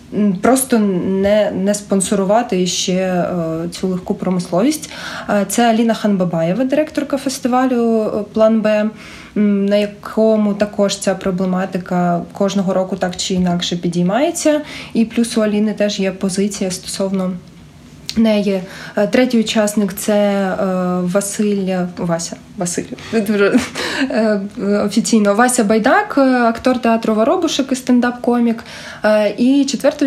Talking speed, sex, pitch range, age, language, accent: 110 wpm, female, 185-225 Hz, 20-39, Ukrainian, native